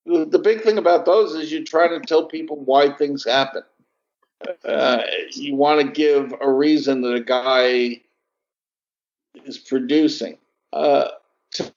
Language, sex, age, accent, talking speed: English, male, 60-79, American, 145 wpm